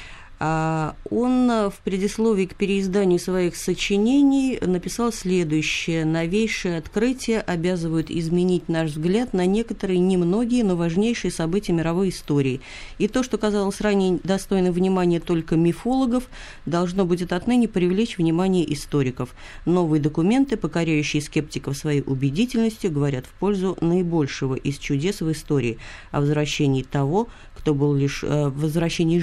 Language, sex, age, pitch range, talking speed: Russian, female, 30-49, 150-195 Hz, 120 wpm